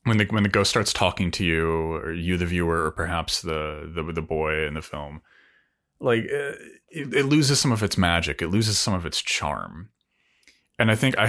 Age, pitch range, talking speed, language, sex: 30-49, 80-110 Hz, 215 wpm, English, male